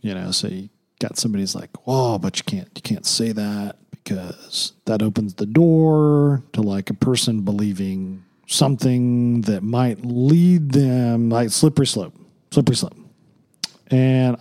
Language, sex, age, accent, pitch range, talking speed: English, male, 40-59, American, 105-140 Hz, 150 wpm